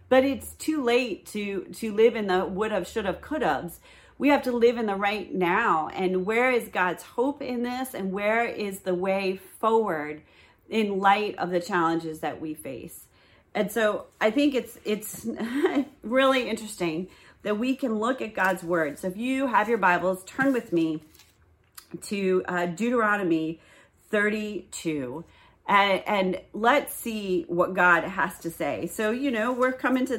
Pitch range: 180-235 Hz